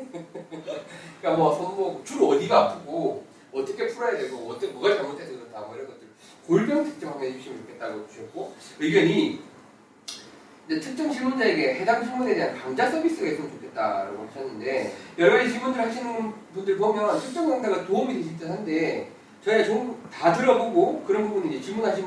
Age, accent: 30-49, native